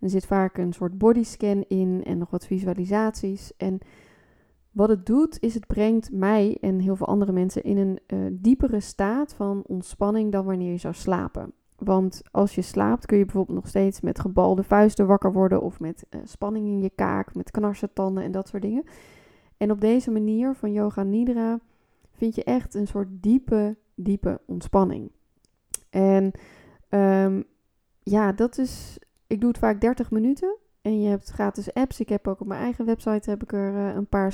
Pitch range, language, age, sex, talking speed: 190-220 Hz, Dutch, 20-39, female, 185 wpm